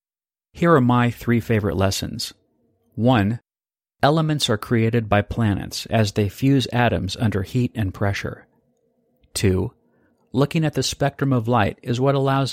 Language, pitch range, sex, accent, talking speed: English, 105-130 Hz, male, American, 145 wpm